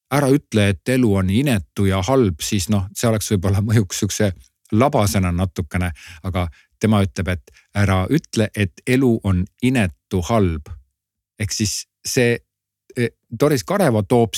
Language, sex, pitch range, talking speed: Czech, male, 95-120 Hz, 140 wpm